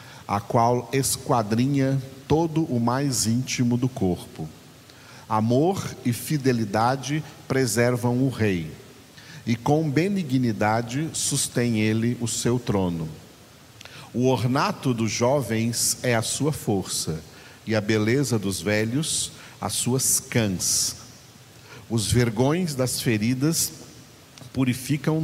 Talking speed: 105 wpm